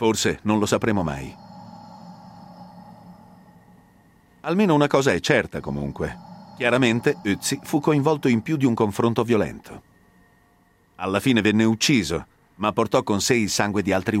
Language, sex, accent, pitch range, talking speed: Italian, male, native, 95-155 Hz, 140 wpm